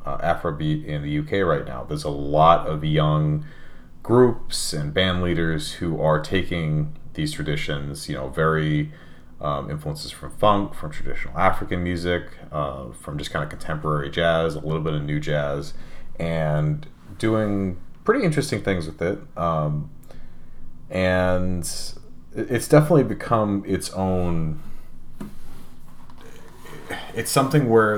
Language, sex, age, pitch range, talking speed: English, male, 30-49, 75-95 Hz, 135 wpm